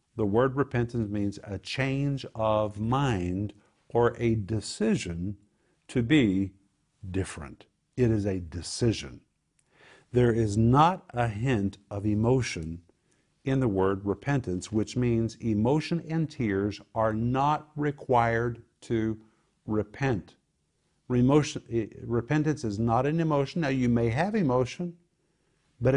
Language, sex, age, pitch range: English, male, 50-69, 105-140 Hz